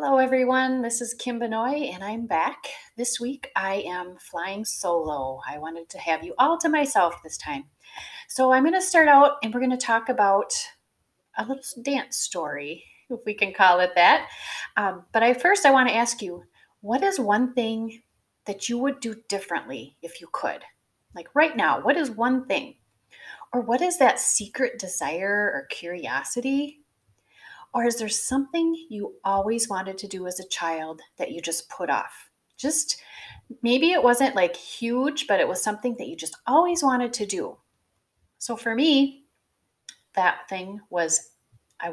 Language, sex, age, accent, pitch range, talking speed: English, female, 30-49, American, 190-275 Hz, 175 wpm